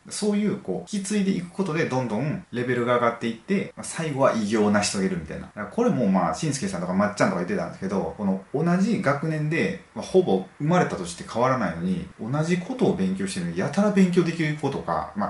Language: Japanese